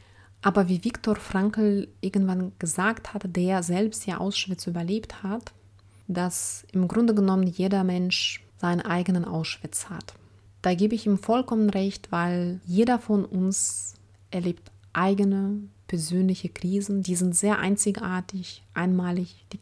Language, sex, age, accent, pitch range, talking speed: German, female, 30-49, German, 170-200 Hz, 130 wpm